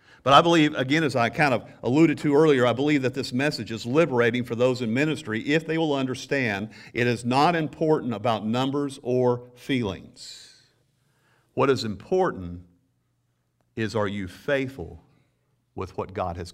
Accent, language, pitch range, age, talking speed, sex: American, English, 110-140 Hz, 50-69, 165 wpm, male